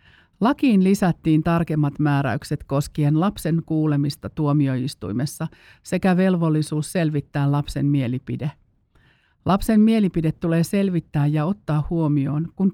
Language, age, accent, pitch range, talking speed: Finnish, 50-69, native, 145-170 Hz, 100 wpm